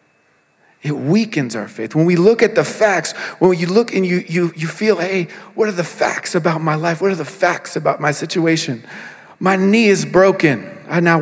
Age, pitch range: 40-59, 145-180 Hz